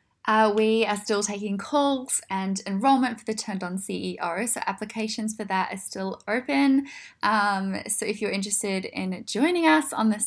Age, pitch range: 10-29, 195-230 Hz